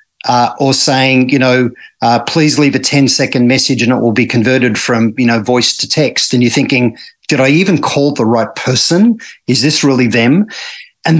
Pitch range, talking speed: 130-170 Hz, 200 wpm